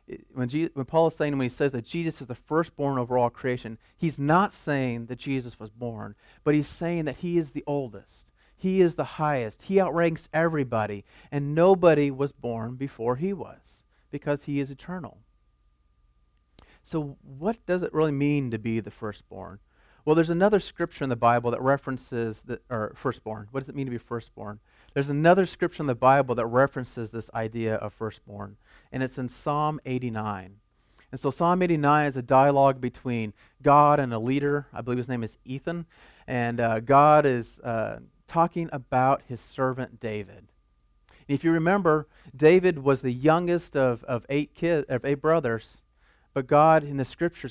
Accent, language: American, English